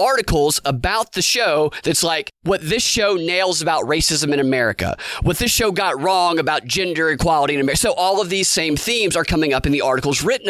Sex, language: male, English